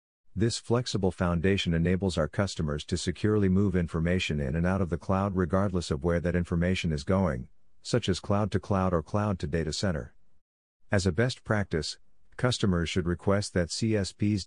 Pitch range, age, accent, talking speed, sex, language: 85-105 Hz, 50-69, American, 160 wpm, male, English